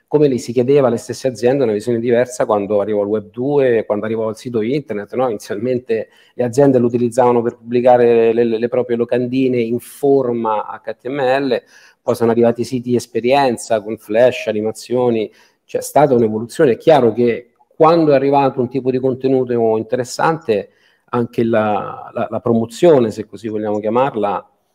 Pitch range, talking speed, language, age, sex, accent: 110-130 Hz, 165 wpm, Italian, 40-59, male, native